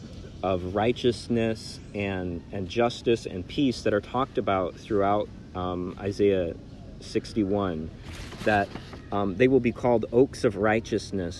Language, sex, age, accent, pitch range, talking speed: English, male, 40-59, American, 95-115 Hz, 125 wpm